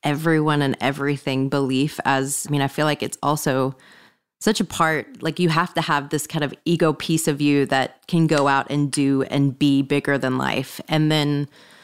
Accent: American